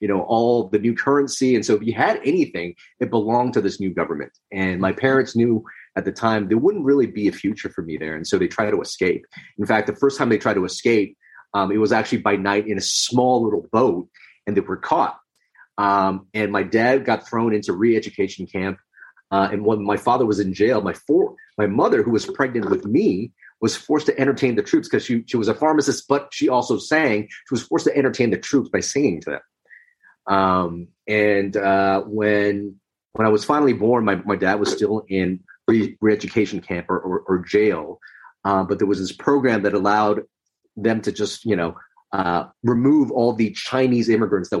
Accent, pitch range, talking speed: American, 95-115 Hz, 215 wpm